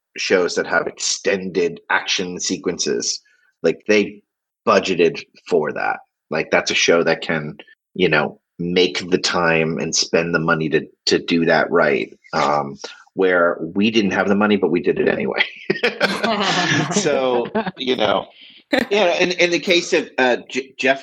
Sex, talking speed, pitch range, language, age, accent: male, 155 wpm, 95-125 Hz, English, 30-49, American